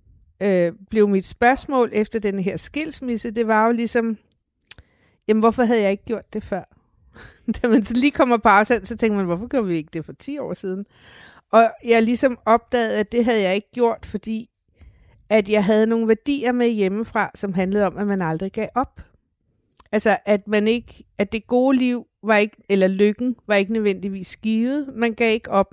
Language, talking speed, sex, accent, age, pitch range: Danish, 195 wpm, female, native, 50-69, 190-235 Hz